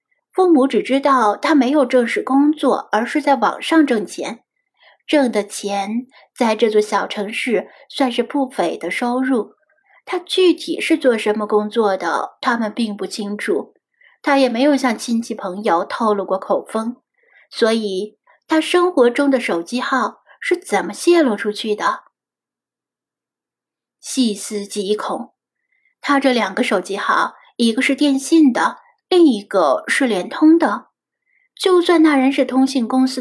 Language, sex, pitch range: Chinese, female, 215-295 Hz